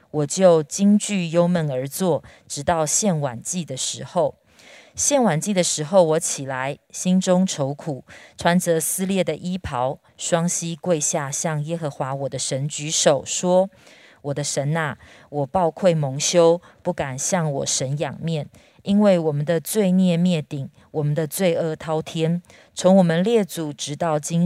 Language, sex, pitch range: Chinese, female, 145-180 Hz